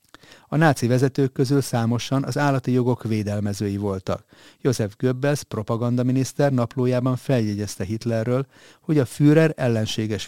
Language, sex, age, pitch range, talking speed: Hungarian, male, 30-49, 110-135 Hz, 115 wpm